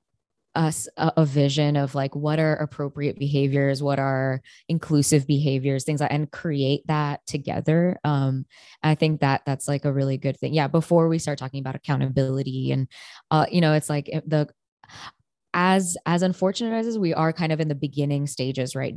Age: 20-39